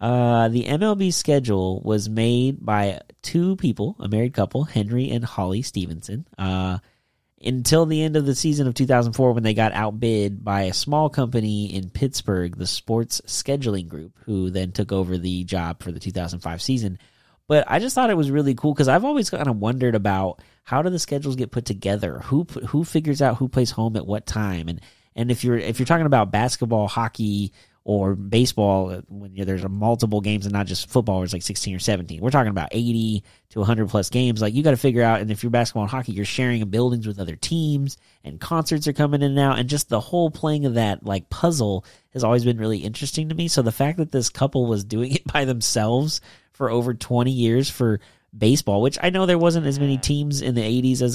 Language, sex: English, male